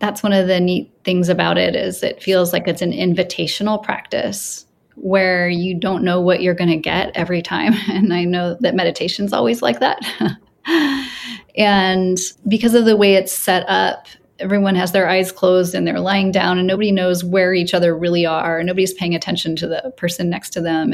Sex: female